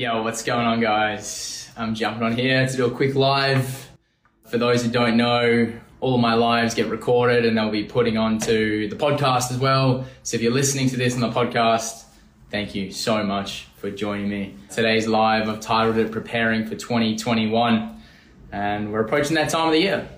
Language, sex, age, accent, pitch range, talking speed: English, male, 20-39, Australian, 110-130 Hz, 195 wpm